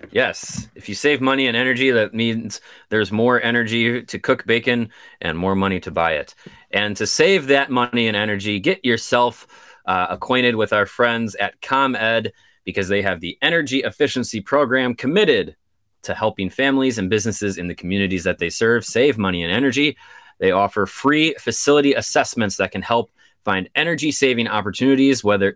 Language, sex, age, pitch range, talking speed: English, male, 30-49, 100-130 Hz, 170 wpm